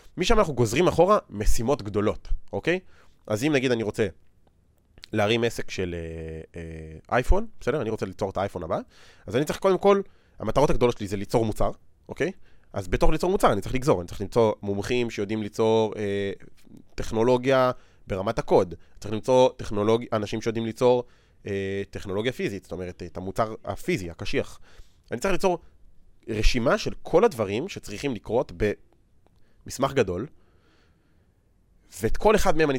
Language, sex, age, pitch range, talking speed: Hebrew, male, 30-49, 100-130 Hz, 160 wpm